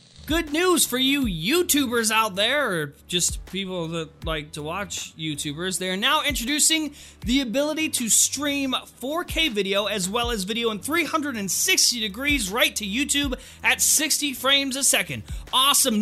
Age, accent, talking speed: 30-49, American, 155 wpm